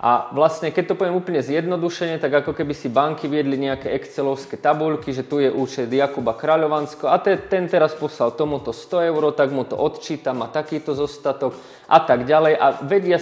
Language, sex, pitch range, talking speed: Slovak, male, 135-155 Hz, 185 wpm